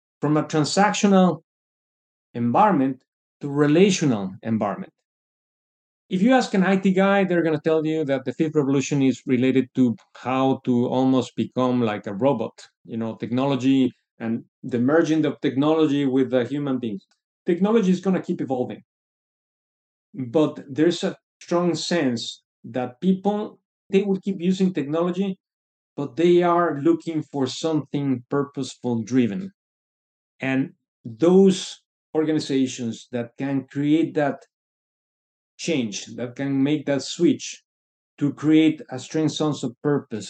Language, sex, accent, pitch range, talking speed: English, male, Mexican, 125-165 Hz, 135 wpm